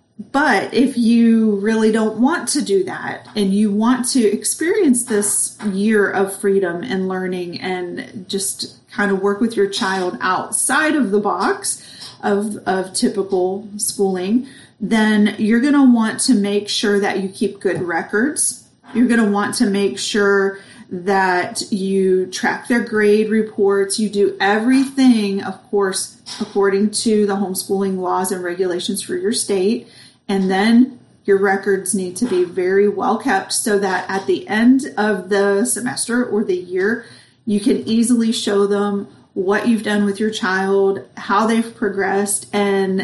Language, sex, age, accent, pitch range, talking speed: English, female, 30-49, American, 195-230 Hz, 160 wpm